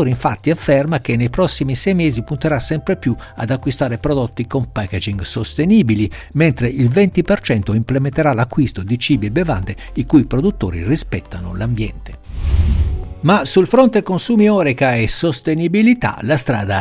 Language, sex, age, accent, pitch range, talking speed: Italian, male, 60-79, native, 105-160 Hz, 140 wpm